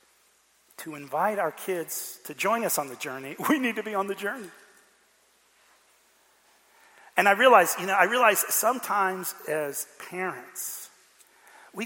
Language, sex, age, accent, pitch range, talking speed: English, male, 40-59, American, 155-200 Hz, 140 wpm